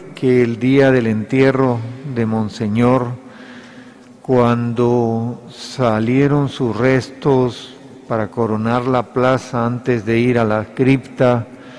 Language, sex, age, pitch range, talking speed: Spanish, male, 50-69, 120-135 Hz, 105 wpm